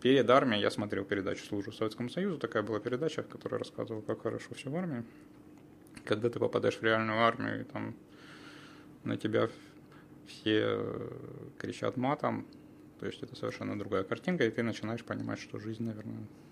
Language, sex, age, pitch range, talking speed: Ukrainian, male, 20-39, 100-125 Hz, 165 wpm